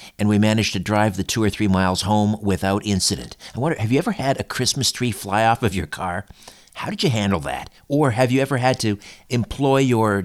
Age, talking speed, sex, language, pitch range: 50-69, 235 wpm, male, English, 95-125 Hz